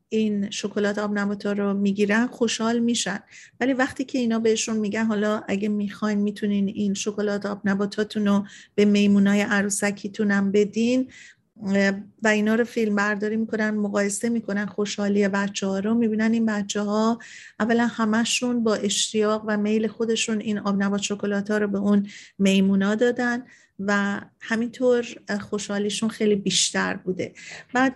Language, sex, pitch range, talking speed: Persian, female, 200-225 Hz, 145 wpm